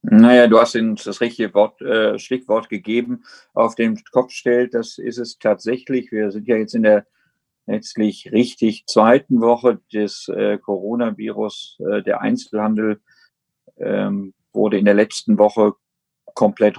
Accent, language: German, German